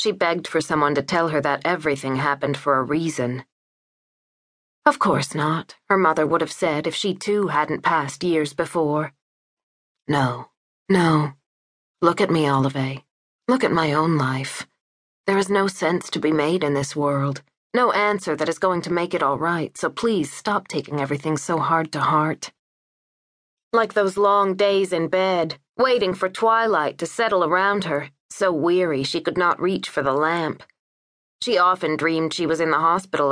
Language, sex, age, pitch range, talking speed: English, female, 30-49, 145-185 Hz, 175 wpm